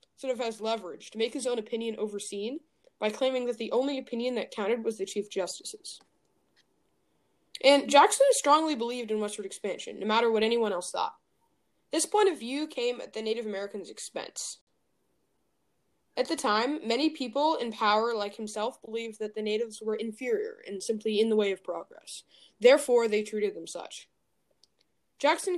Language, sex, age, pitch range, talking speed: English, female, 20-39, 210-290 Hz, 170 wpm